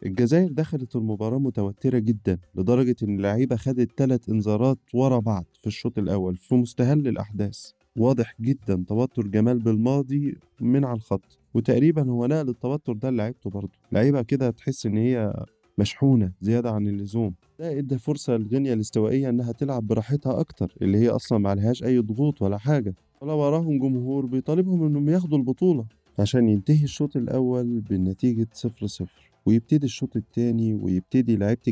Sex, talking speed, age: male, 150 wpm, 20-39